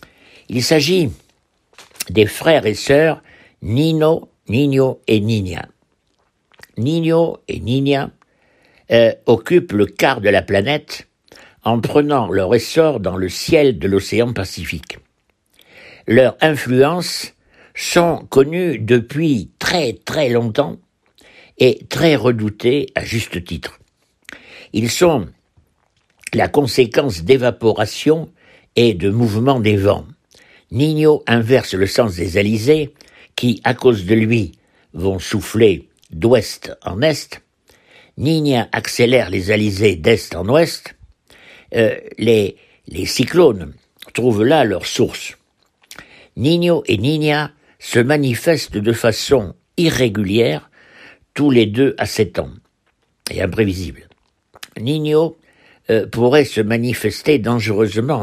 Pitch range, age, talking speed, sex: 105-150 Hz, 60-79, 110 wpm, male